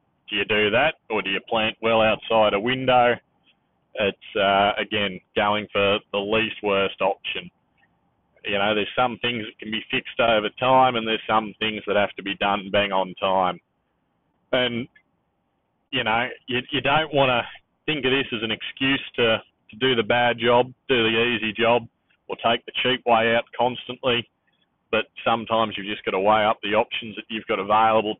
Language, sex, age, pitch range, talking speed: English, male, 30-49, 100-120 Hz, 190 wpm